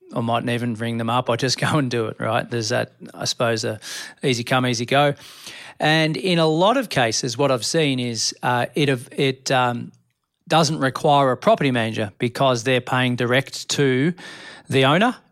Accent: Australian